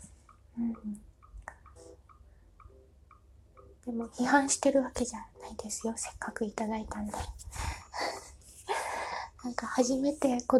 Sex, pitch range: female, 220-255 Hz